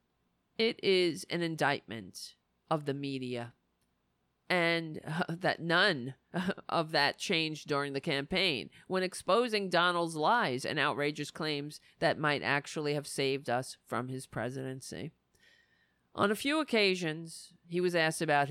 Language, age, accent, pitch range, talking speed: English, 40-59, American, 140-185 Hz, 135 wpm